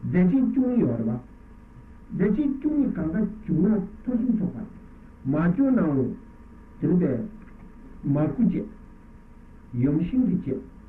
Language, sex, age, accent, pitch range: Italian, male, 60-79, Indian, 135-215 Hz